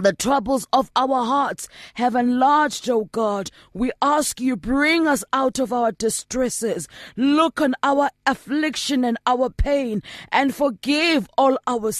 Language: English